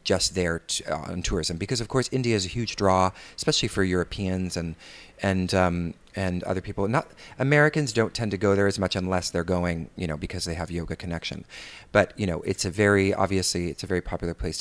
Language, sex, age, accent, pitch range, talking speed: English, male, 30-49, American, 90-105 Hz, 215 wpm